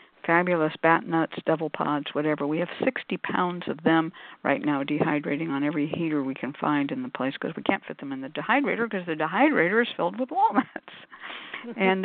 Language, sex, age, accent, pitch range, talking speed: English, female, 60-79, American, 155-225 Hz, 200 wpm